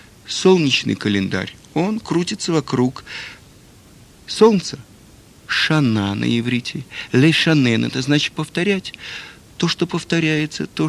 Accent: native